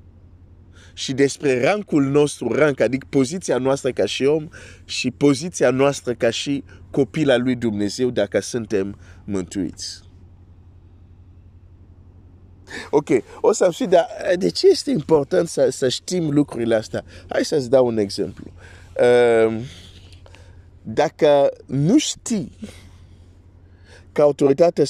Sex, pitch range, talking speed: male, 90-140 Hz, 110 wpm